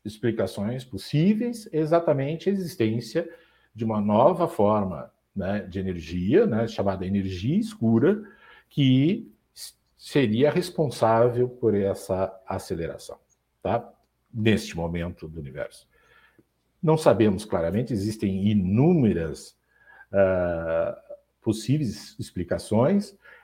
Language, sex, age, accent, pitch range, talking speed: Portuguese, male, 60-79, Brazilian, 100-145 Hz, 85 wpm